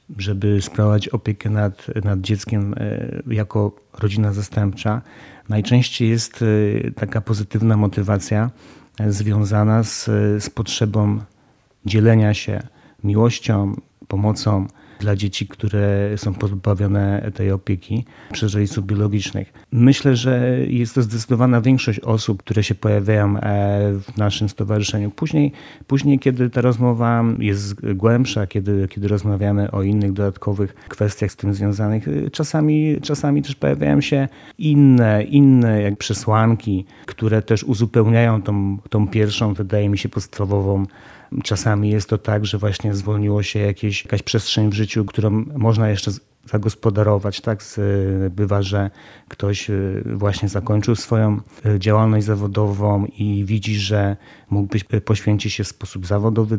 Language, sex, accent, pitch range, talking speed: Polish, male, native, 100-115 Hz, 120 wpm